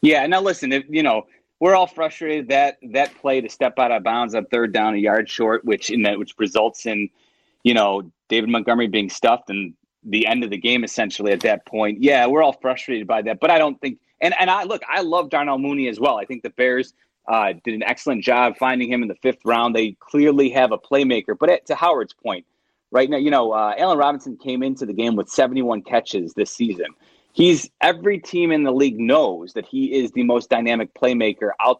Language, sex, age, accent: English, male, 30-49, American